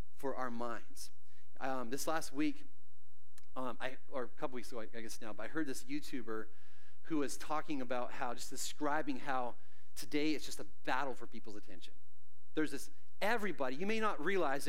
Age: 40-59